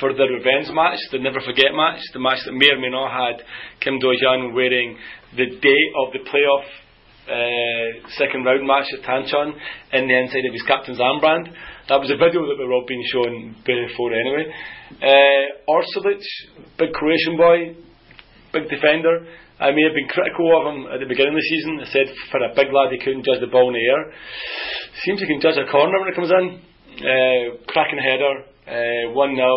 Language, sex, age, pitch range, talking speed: English, male, 30-49, 125-155 Hz, 195 wpm